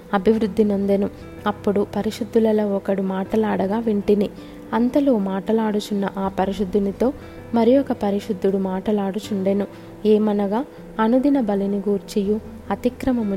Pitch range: 195-220 Hz